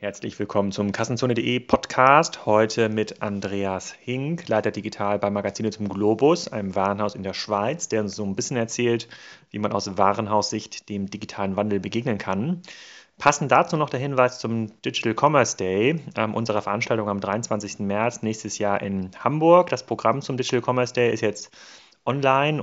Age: 30-49